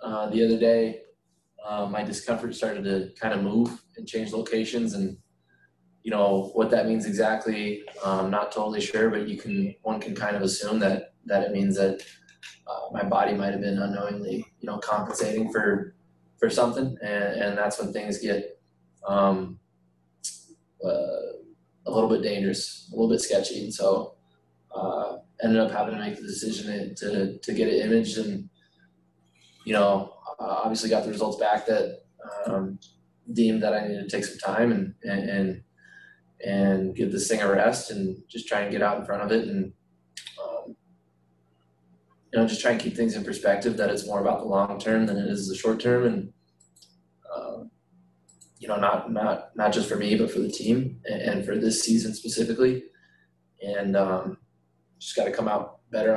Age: 20-39